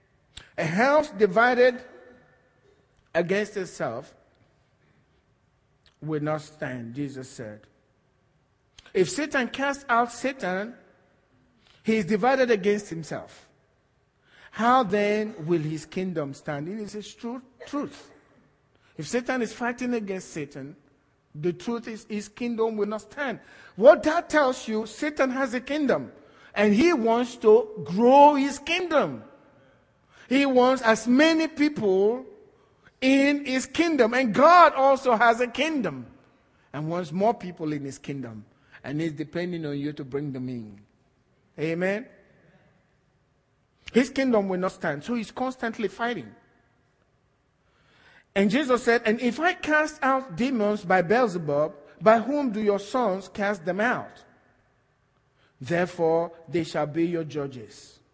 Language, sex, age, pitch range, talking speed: English, male, 50-69, 150-250 Hz, 130 wpm